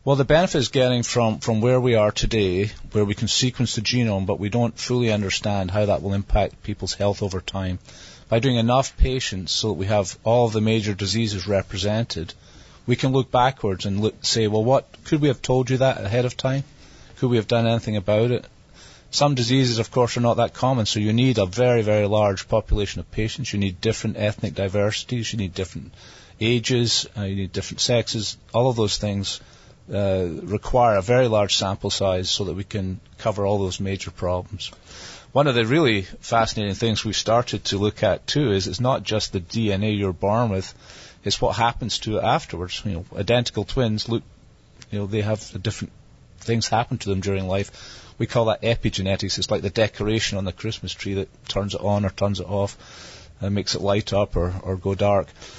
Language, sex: English, male